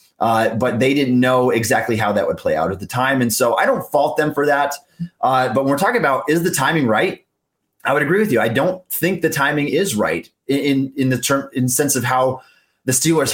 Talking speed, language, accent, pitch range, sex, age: 245 wpm, English, American, 115-145 Hz, male, 30-49